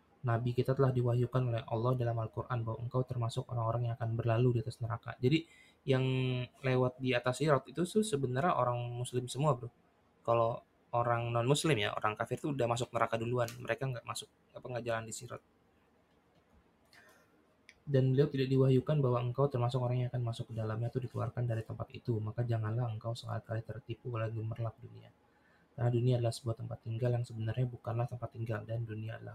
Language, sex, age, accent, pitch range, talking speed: English, male, 20-39, Indonesian, 115-130 Hz, 180 wpm